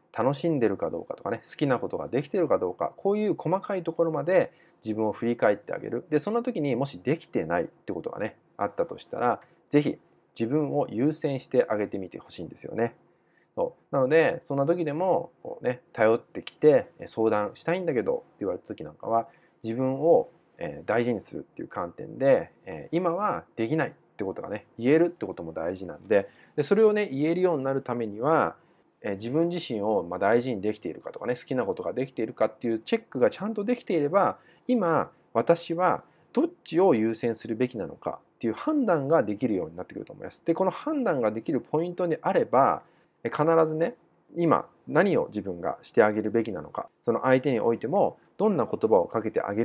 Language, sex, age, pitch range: Japanese, male, 20-39, 115-185 Hz